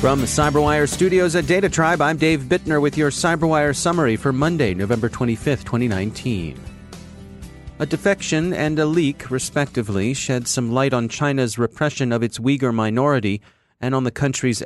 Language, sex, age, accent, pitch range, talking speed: English, male, 30-49, American, 110-145 Hz, 155 wpm